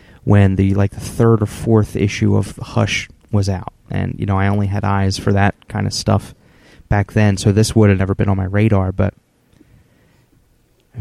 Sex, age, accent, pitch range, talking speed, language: male, 20-39, American, 100-115 Hz, 200 wpm, English